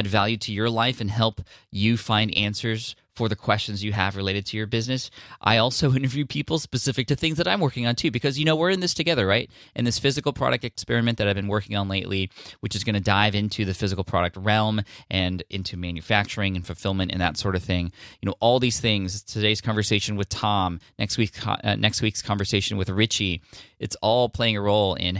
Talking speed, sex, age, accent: 220 wpm, male, 20-39, American